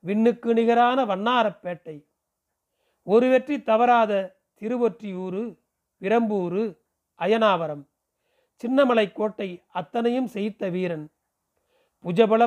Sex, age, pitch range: male, 40-59, 185-230 Hz